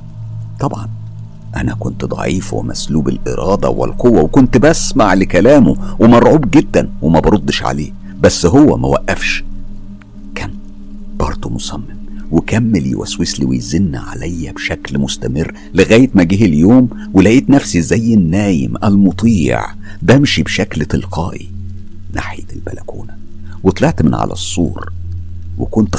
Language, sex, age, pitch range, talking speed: Arabic, male, 50-69, 80-110 Hz, 110 wpm